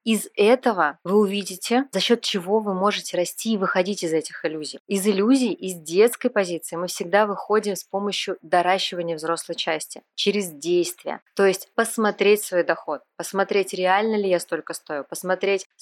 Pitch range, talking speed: 180-220 Hz, 160 wpm